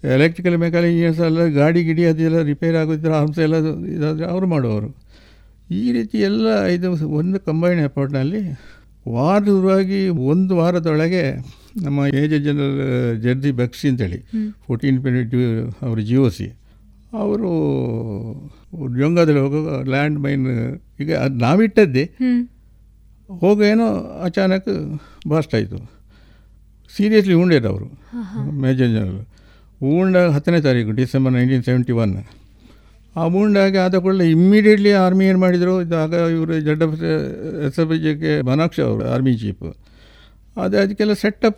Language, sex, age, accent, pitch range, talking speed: Kannada, male, 60-79, native, 125-175 Hz, 115 wpm